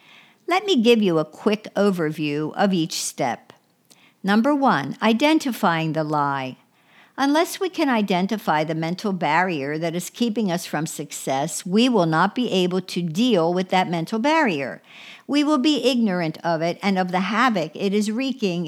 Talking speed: 165 wpm